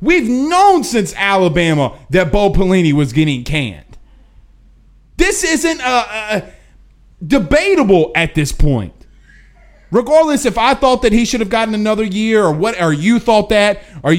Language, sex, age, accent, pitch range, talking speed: English, male, 30-49, American, 165-235 Hz, 150 wpm